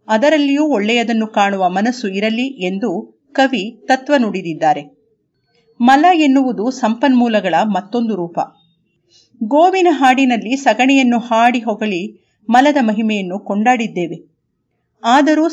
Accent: native